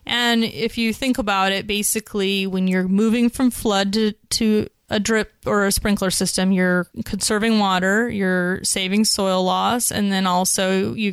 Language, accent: English, American